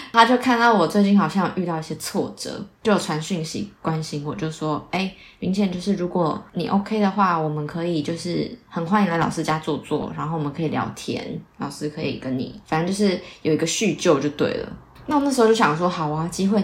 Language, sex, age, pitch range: Chinese, female, 20-39, 160-205 Hz